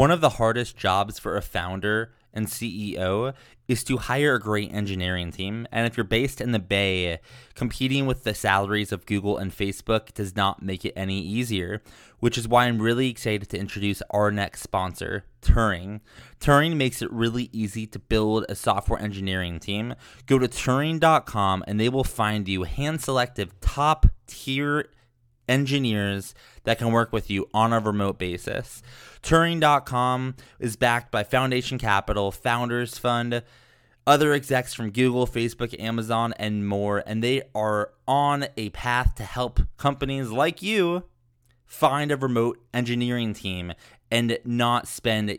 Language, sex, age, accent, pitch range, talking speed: English, male, 20-39, American, 105-125 Hz, 155 wpm